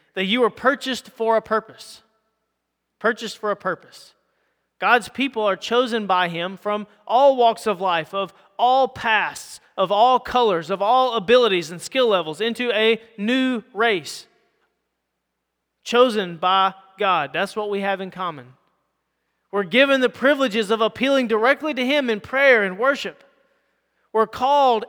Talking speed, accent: 150 wpm, American